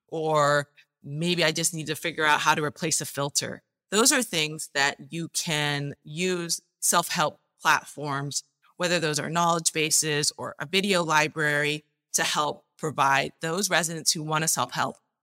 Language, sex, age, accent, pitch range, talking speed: English, female, 30-49, American, 150-195 Hz, 160 wpm